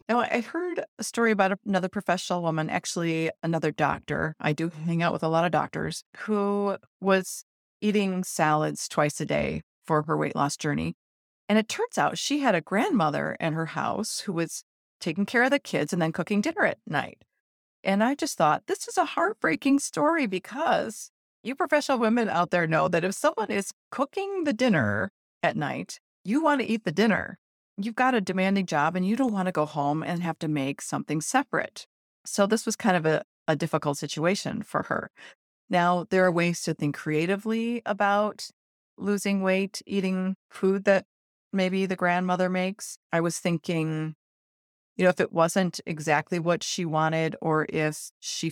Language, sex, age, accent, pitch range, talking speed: English, female, 40-59, American, 160-210 Hz, 185 wpm